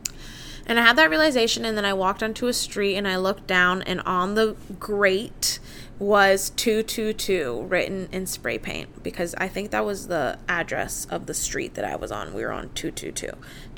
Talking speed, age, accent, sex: 190 wpm, 20-39, American, female